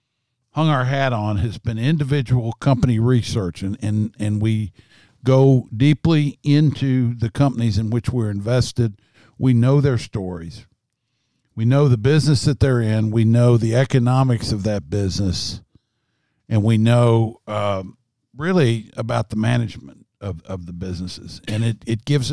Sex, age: male, 50-69